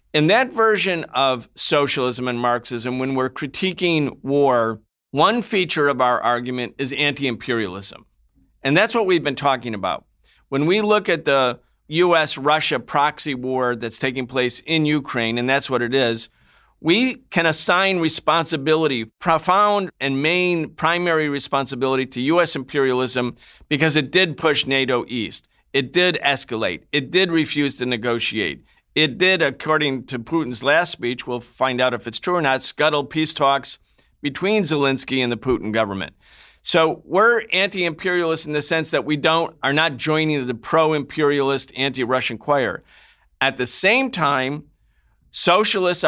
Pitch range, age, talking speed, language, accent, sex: 130-160 Hz, 50-69, 150 wpm, English, American, male